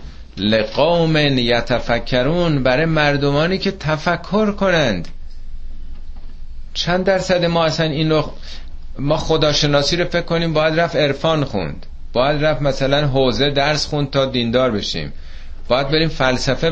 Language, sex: Persian, male